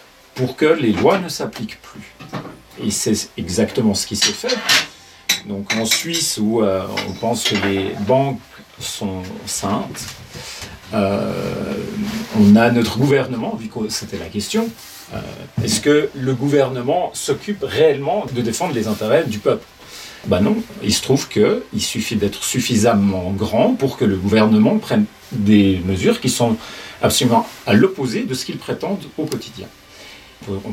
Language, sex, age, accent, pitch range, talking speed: French, male, 40-59, French, 100-140 Hz, 150 wpm